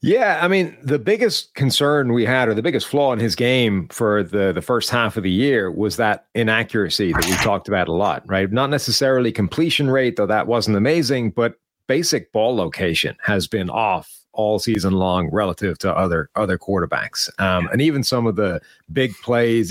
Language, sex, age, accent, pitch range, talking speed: English, male, 40-59, American, 100-120 Hz, 195 wpm